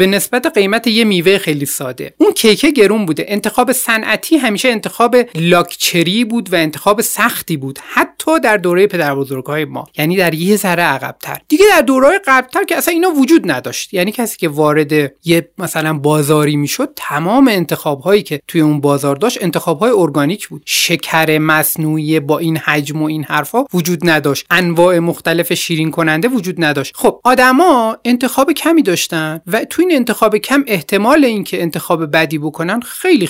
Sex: male